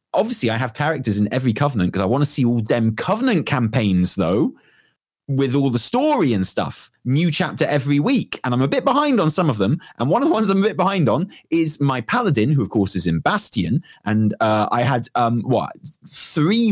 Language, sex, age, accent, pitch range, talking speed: English, male, 30-49, British, 95-140 Hz, 225 wpm